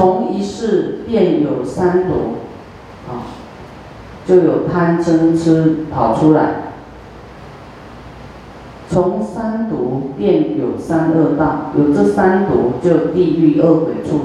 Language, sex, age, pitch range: Chinese, female, 40-59, 155-180 Hz